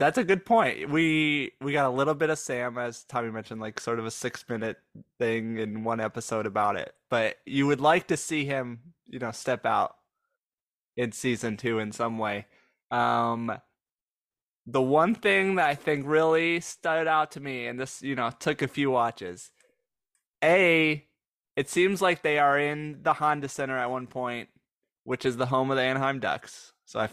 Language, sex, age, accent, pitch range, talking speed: English, male, 20-39, American, 115-150 Hz, 190 wpm